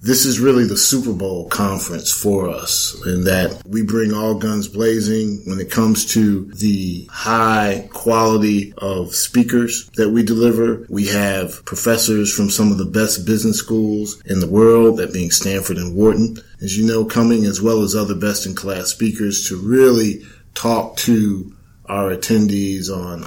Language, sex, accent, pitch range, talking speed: English, male, American, 100-115 Hz, 170 wpm